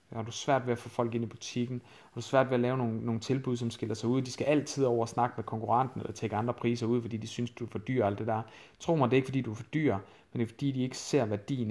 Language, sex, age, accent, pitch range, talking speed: Danish, male, 30-49, native, 110-130 Hz, 340 wpm